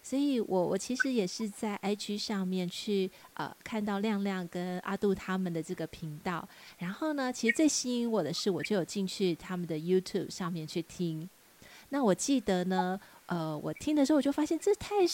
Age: 30-49